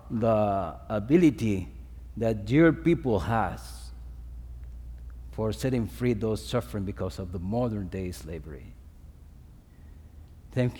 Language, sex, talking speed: English, male, 100 wpm